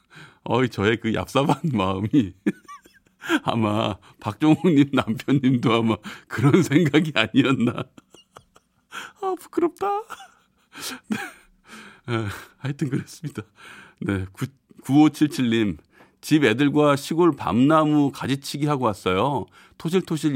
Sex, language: male, Korean